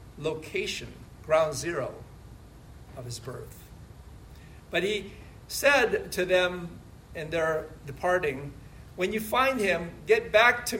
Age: 50-69